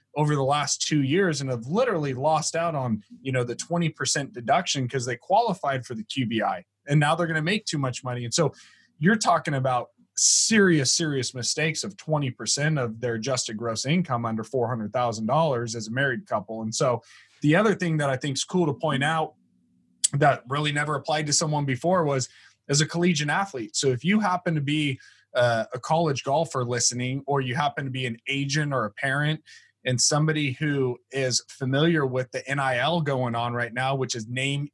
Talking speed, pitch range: 195 wpm, 125-155 Hz